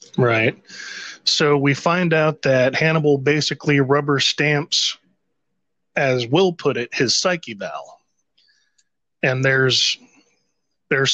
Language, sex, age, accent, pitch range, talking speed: English, male, 20-39, American, 130-160 Hz, 110 wpm